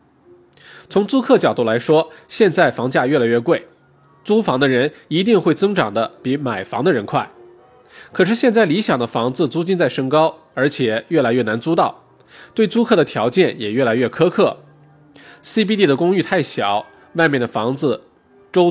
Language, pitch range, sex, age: Chinese, 130-185 Hz, male, 20-39